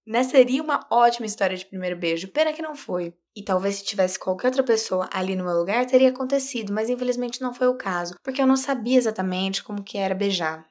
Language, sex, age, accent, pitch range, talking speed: Portuguese, female, 20-39, Brazilian, 180-230 Hz, 225 wpm